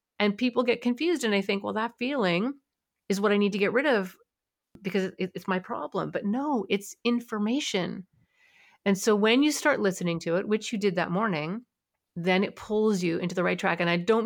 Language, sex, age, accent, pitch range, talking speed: English, female, 30-49, American, 180-230 Hz, 210 wpm